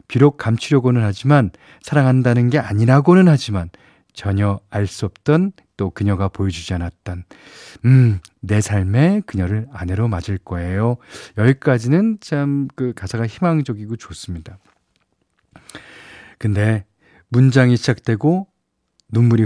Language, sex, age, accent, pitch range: Korean, male, 40-59, native, 95-130 Hz